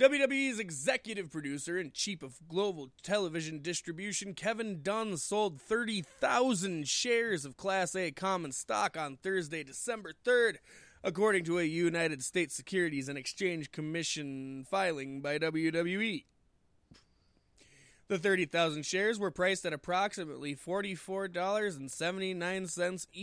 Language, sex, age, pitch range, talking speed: English, male, 20-39, 145-205 Hz, 110 wpm